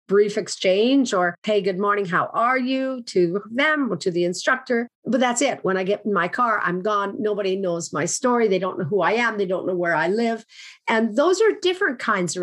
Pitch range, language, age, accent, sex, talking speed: 190-240 Hz, English, 50-69, American, female, 230 wpm